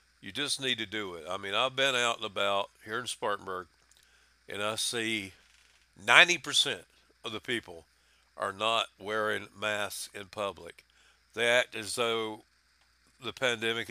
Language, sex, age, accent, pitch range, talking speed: English, male, 50-69, American, 100-120 Hz, 150 wpm